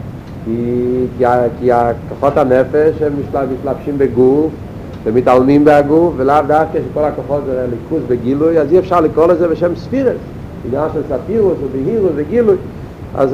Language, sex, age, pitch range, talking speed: Hebrew, male, 50-69, 125-165 Hz, 135 wpm